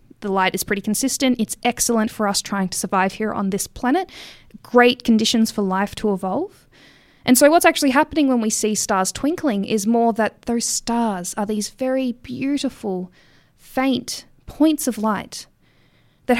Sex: female